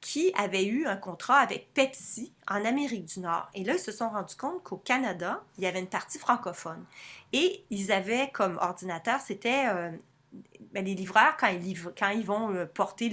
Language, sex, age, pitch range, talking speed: French, female, 30-49, 180-235 Hz, 195 wpm